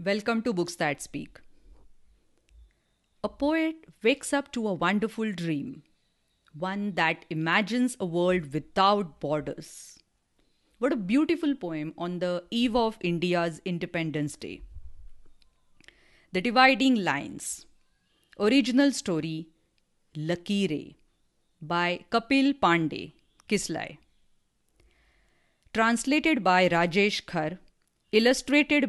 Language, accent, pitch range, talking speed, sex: English, Indian, 160-230 Hz, 95 wpm, female